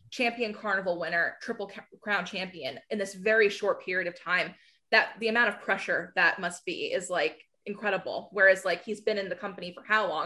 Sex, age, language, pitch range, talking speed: female, 20-39, English, 185-225 Hz, 185 wpm